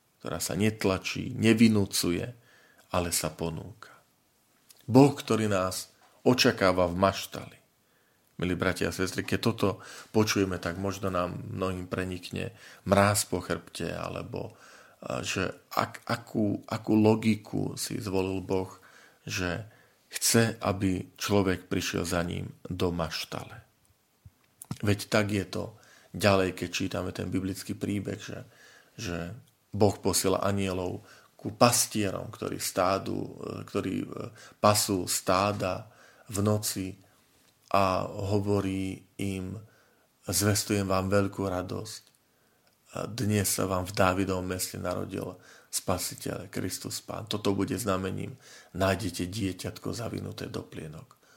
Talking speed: 110 wpm